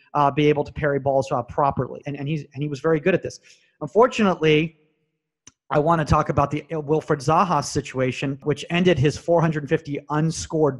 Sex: male